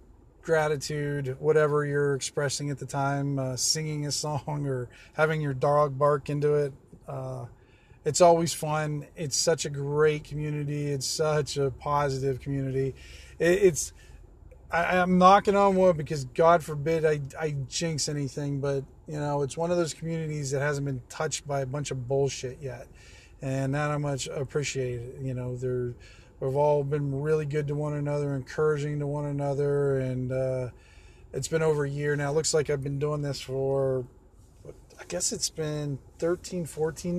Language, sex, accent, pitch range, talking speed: English, male, American, 135-155 Hz, 170 wpm